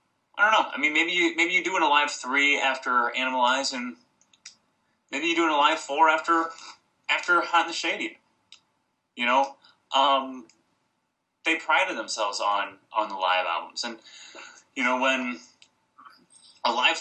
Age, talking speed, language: 20-39, 165 wpm, English